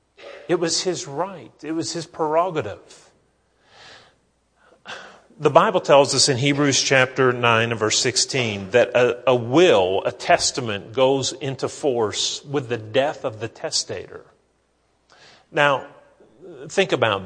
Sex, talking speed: male, 130 wpm